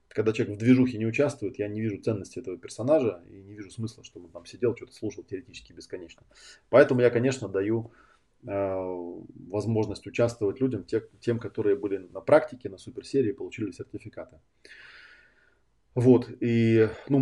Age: 20-39